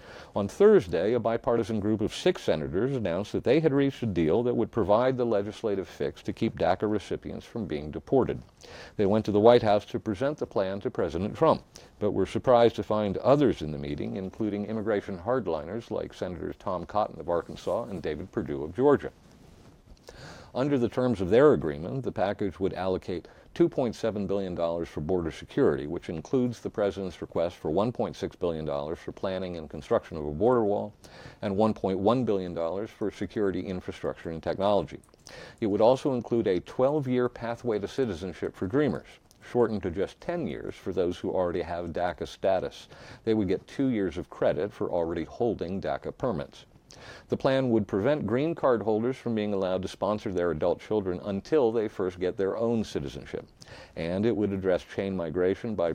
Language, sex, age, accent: English, male, 50-69, American